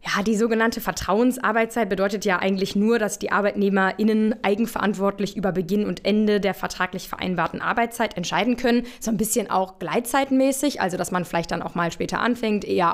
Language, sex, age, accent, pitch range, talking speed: German, female, 20-39, German, 175-215 Hz, 170 wpm